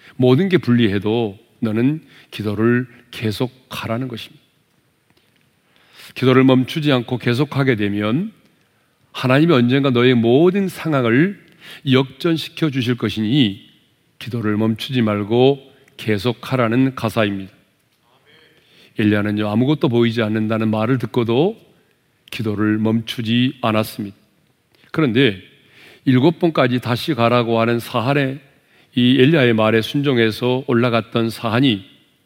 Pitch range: 110-135 Hz